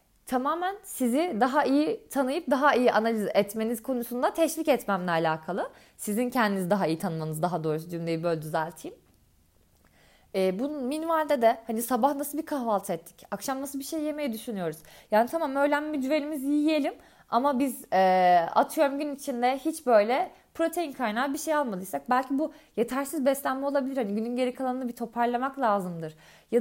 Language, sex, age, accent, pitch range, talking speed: Turkish, female, 20-39, native, 205-285 Hz, 160 wpm